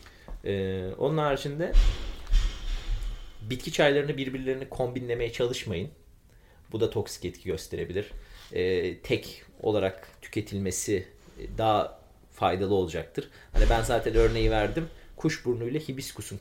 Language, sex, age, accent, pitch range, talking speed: Turkish, male, 30-49, native, 100-125 Hz, 100 wpm